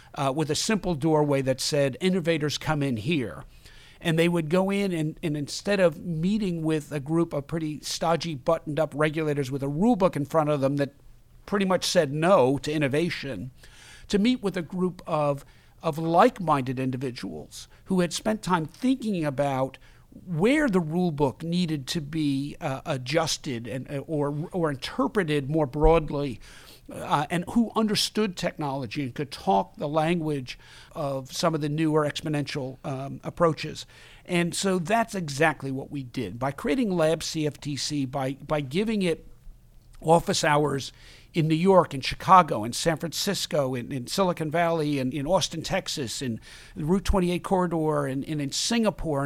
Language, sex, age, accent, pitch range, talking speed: English, male, 50-69, American, 140-175 Hz, 165 wpm